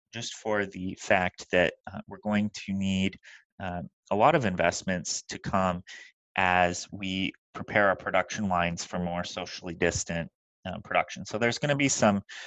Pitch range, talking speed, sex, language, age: 85-105 Hz, 165 wpm, male, English, 30-49